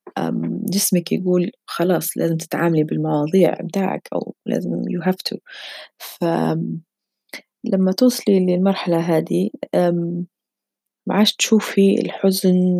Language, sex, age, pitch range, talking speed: Arabic, female, 20-39, 165-200 Hz, 90 wpm